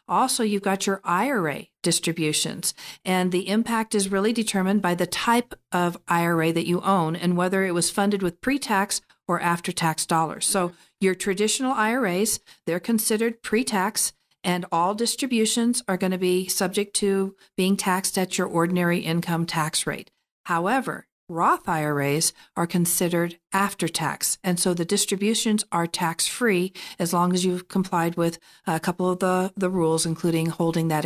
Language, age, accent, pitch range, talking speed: English, 50-69, American, 170-200 Hz, 160 wpm